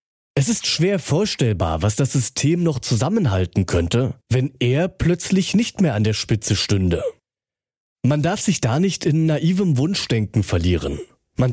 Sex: male